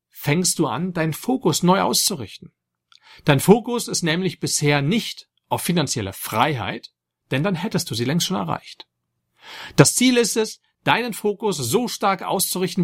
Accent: German